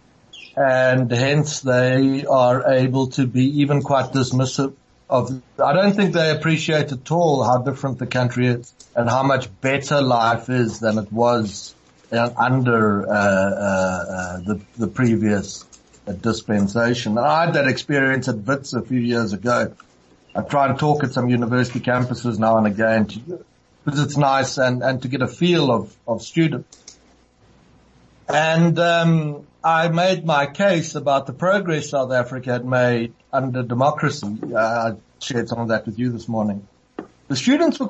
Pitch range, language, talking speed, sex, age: 120-145 Hz, English, 160 wpm, male, 60-79